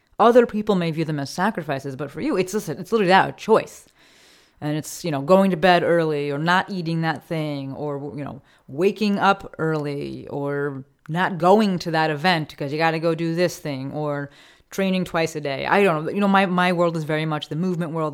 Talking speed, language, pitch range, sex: 230 wpm, English, 145-185 Hz, female